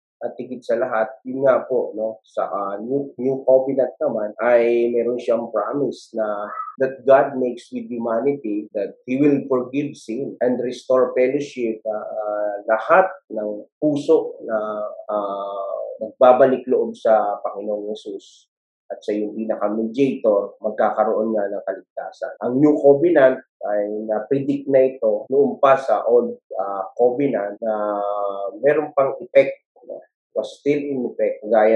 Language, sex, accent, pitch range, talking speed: Filipino, male, native, 105-150 Hz, 145 wpm